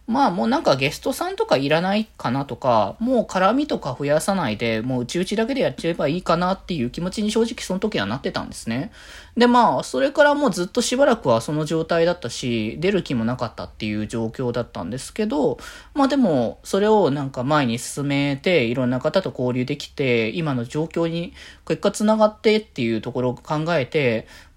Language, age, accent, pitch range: Japanese, 20-39, native, 125-210 Hz